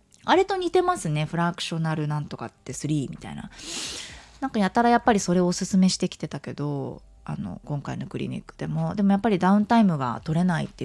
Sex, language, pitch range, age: female, Japanese, 160-255 Hz, 20-39